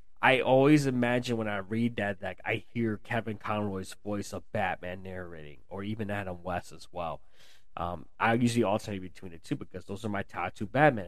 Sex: male